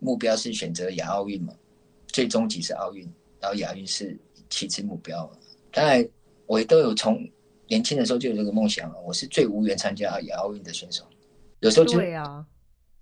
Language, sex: Chinese, male